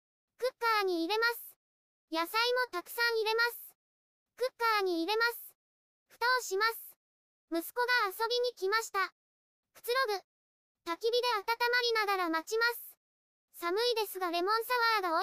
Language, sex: Japanese, male